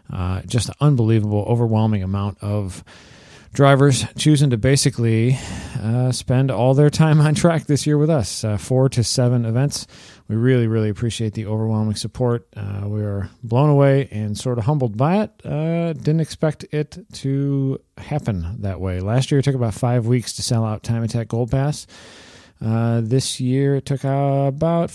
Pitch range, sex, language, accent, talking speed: 105-135 Hz, male, English, American, 175 wpm